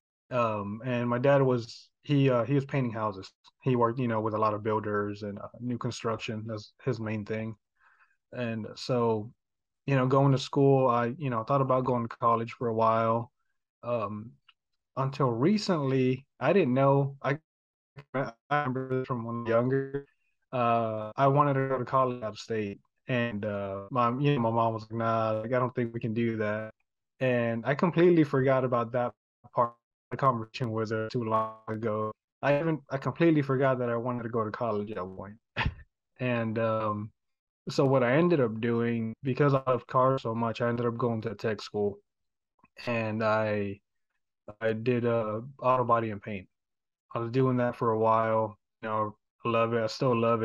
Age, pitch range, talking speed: 20-39, 110-130 Hz, 195 wpm